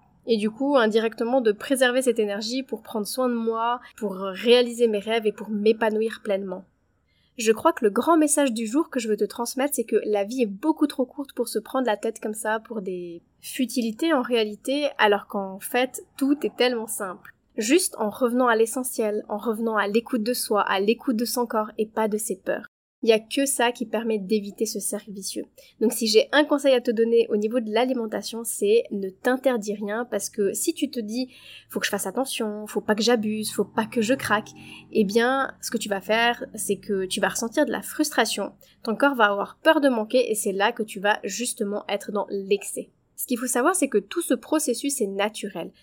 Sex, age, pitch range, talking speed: female, 20-39, 210-255 Hz, 230 wpm